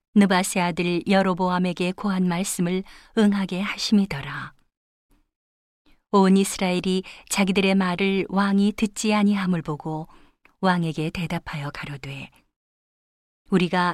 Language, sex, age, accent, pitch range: Korean, female, 40-59, native, 175-205 Hz